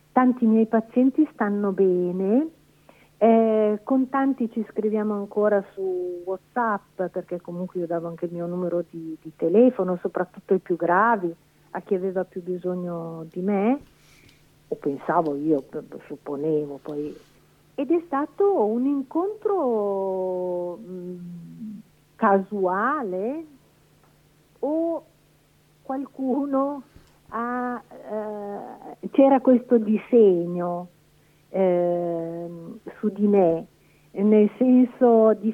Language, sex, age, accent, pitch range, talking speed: Italian, female, 50-69, native, 175-220 Hz, 100 wpm